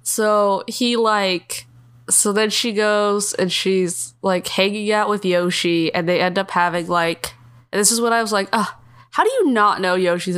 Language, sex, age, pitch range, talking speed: English, female, 20-39, 175-230 Hz, 195 wpm